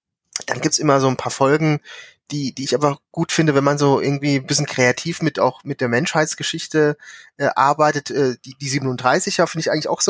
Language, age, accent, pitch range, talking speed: German, 30-49, German, 125-155 Hz, 220 wpm